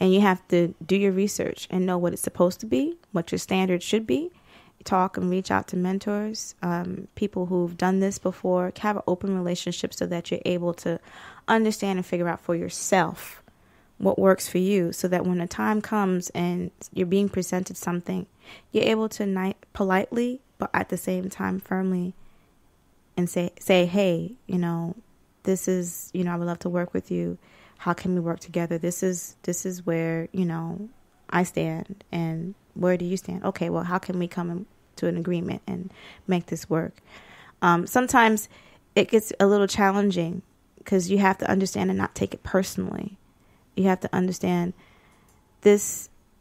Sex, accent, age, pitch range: female, American, 20-39, 175-195 Hz